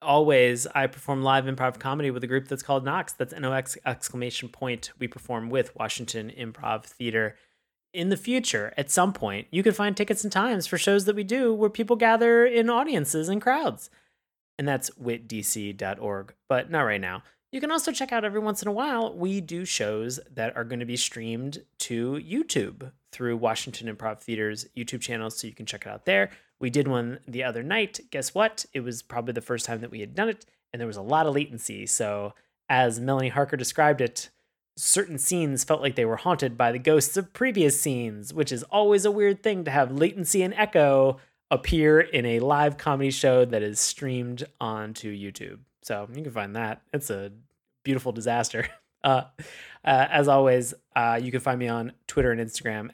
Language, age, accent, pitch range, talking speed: English, 30-49, American, 120-170 Hz, 200 wpm